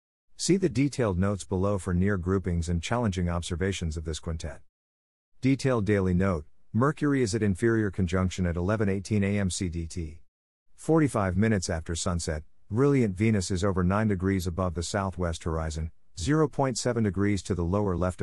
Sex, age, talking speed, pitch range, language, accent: male, 50-69, 150 wpm, 90-120 Hz, English, American